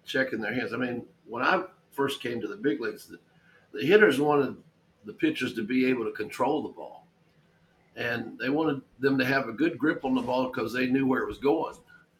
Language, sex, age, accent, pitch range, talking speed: English, male, 50-69, American, 125-155 Hz, 220 wpm